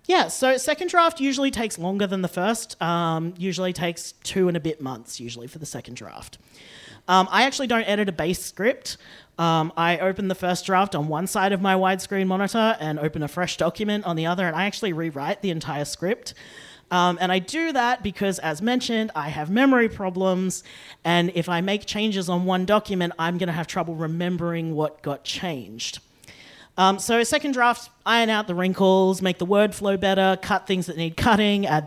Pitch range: 170-215 Hz